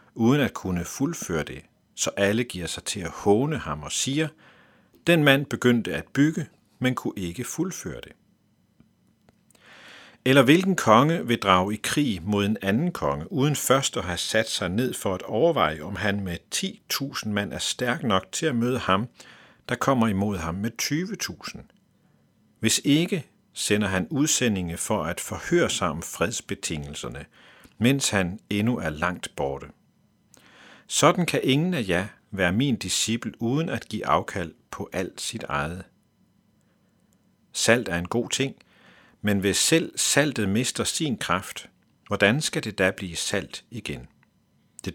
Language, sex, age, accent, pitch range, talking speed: Danish, male, 50-69, native, 95-135 Hz, 155 wpm